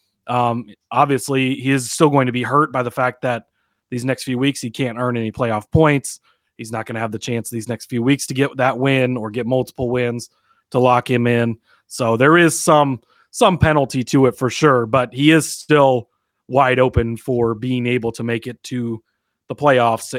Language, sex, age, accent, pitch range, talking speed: English, male, 30-49, American, 120-150 Hz, 210 wpm